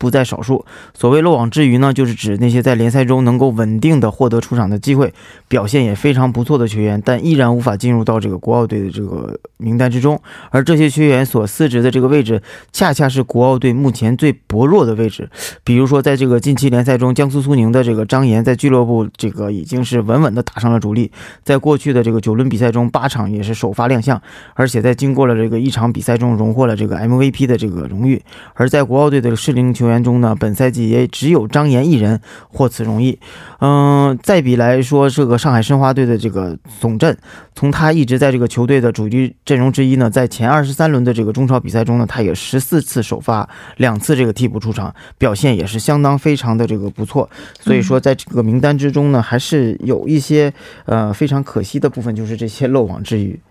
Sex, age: male, 20-39